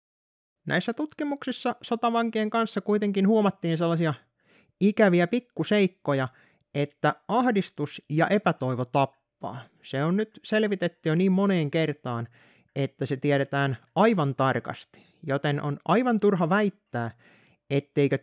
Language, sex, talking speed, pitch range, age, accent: Finnish, male, 110 wpm, 135-195 Hz, 30-49, native